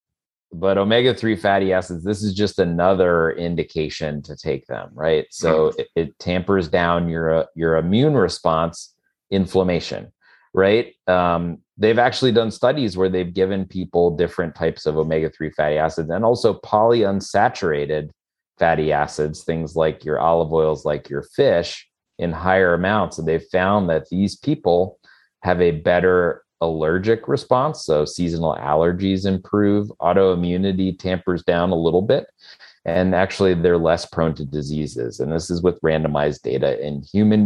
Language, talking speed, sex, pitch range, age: English, 145 wpm, male, 80-95 Hz, 30-49